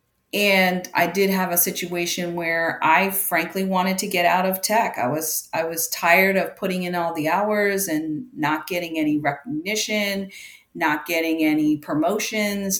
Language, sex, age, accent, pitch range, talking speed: English, female, 30-49, American, 165-195 Hz, 165 wpm